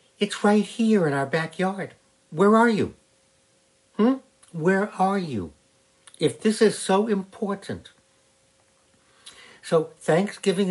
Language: English